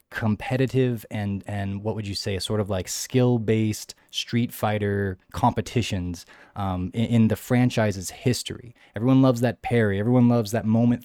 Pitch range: 100-120 Hz